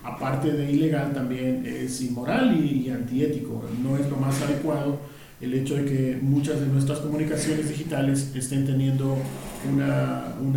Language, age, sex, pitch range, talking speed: Spanish, 40-59, male, 140-175 Hz, 155 wpm